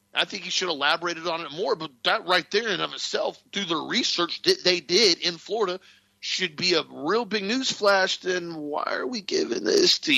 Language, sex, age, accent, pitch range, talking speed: English, male, 40-59, American, 130-200 Hz, 225 wpm